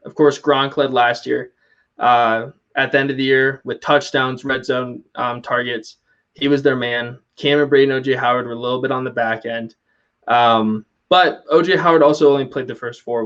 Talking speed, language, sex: 215 wpm, English, male